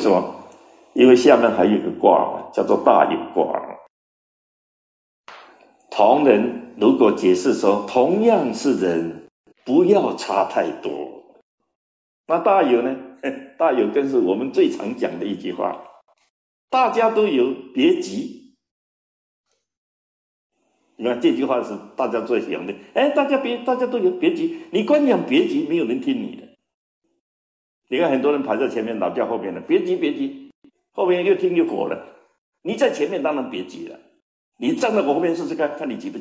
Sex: male